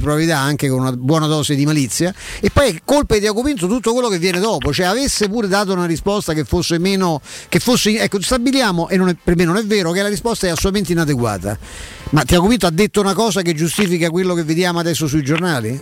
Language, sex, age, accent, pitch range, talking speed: Italian, male, 50-69, native, 150-195 Hz, 230 wpm